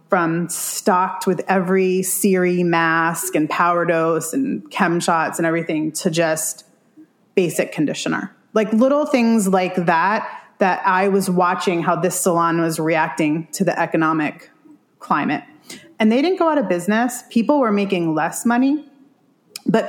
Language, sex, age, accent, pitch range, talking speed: English, female, 30-49, American, 175-225 Hz, 150 wpm